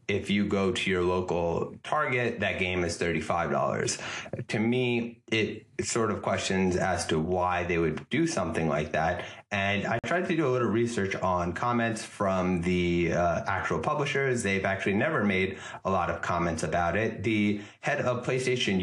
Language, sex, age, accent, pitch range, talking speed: English, male, 30-49, American, 90-115 Hz, 175 wpm